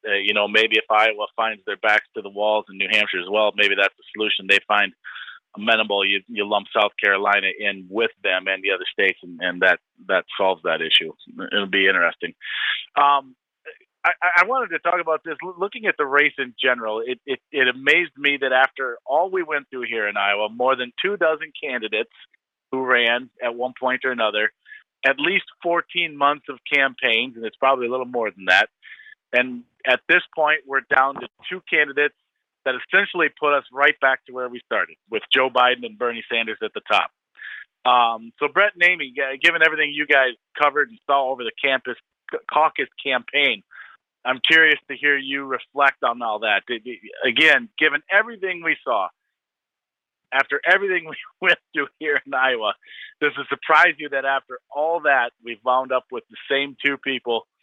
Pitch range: 110-150 Hz